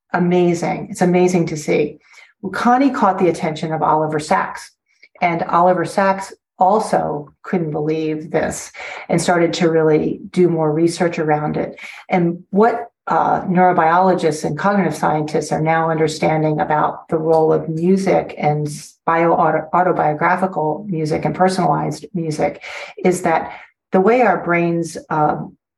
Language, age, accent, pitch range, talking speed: English, 40-59, American, 155-185 Hz, 130 wpm